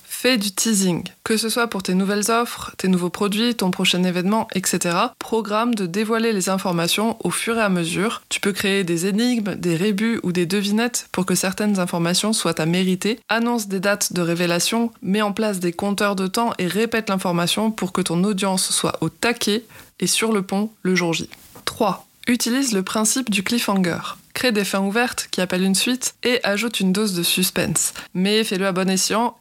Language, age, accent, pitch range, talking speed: French, 20-39, French, 185-225 Hz, 200 wpm